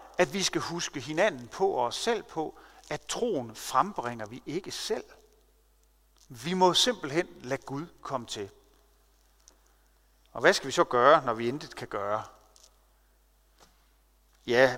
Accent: native